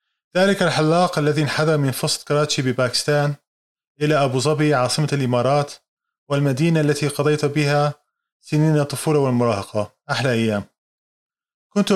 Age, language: 20-39, Arabic